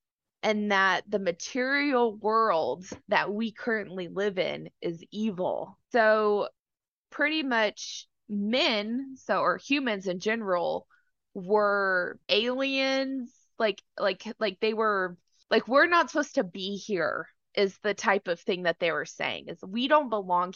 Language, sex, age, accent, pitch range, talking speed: English, female, 20-39, American, 195-245 Hz, 140 wpm